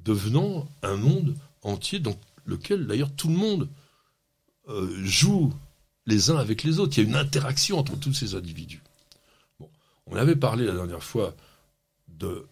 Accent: French